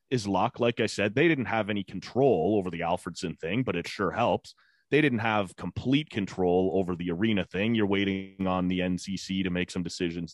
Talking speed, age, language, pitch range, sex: 210 wpm, 30-49, English, 95-120 Hz, male